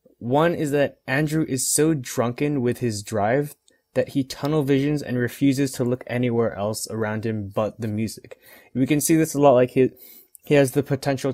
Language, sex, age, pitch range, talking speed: English, male, 20-39, 110-135 Hz, 195 wpm